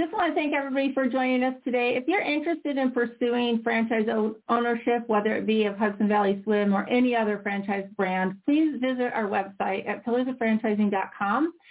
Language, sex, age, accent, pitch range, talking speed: English, female, 40-59, American, 210-260 Hz, 180 wpm